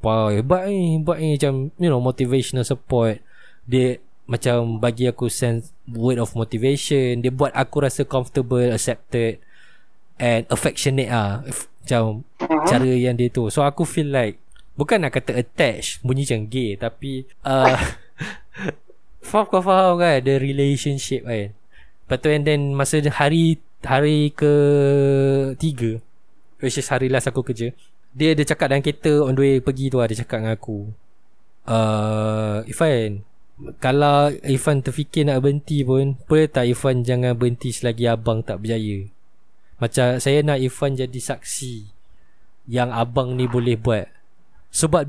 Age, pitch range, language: 20-39, 120-145 Hz, Malay